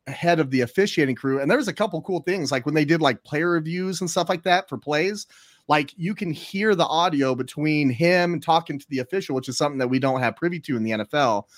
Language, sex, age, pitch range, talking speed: English, male, 30-49, 130-170 Hz, 260 wpm